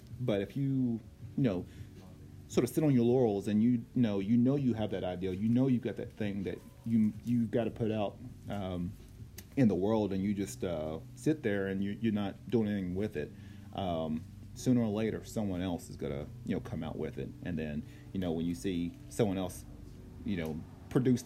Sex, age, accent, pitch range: male, 30-49, American, 95-120 Hz